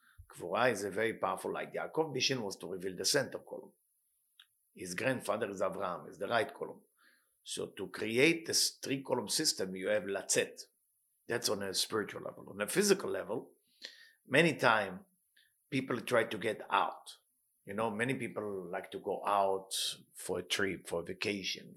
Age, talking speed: 50-69, 170 wpm